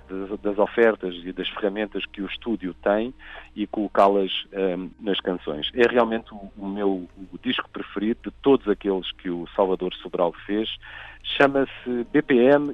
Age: 50-69